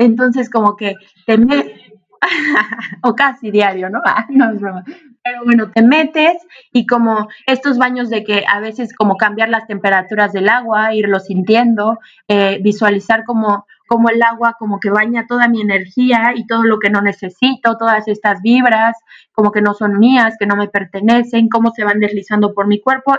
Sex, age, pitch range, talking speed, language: female, 20-39, 200-230 Hz, 180 wpm, Spanish